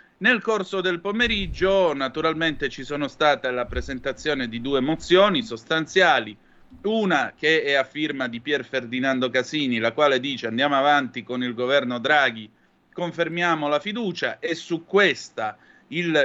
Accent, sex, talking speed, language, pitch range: native, male, 145 wpm, Italian, 130-170 Hz